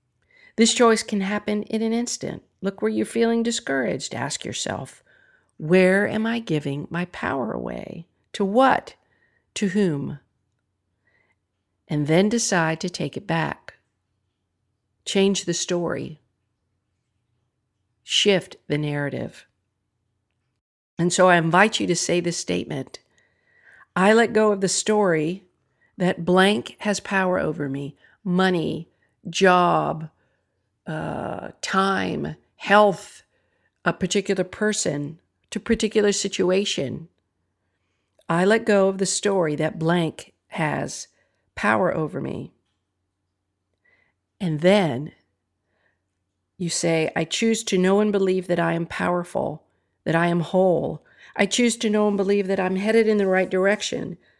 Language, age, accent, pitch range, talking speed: English, 50-69, American, 125-200 Hz, 125 wpm